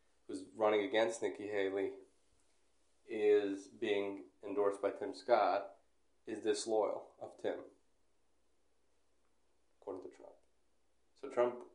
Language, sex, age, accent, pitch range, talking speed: English, male, 20-39, American, 95-140 Hz, 100 wpm